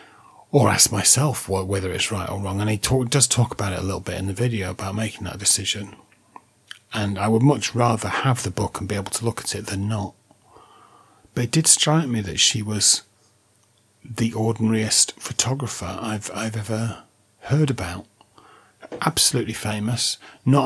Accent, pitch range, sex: British, 100-120 Hz, male